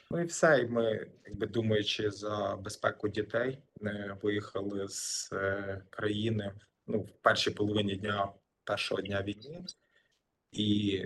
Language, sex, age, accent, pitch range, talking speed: Ukrainian, male, 20-39, native, 105-115 Hz, 125 wpm